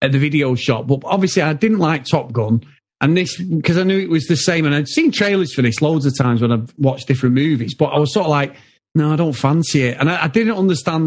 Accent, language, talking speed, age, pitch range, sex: British, English, 270 wpm, 40-59, 130-170 Hz, male